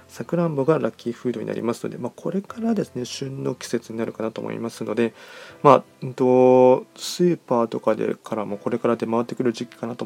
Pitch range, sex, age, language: 115-155 Hz, male, 20-39, Japanese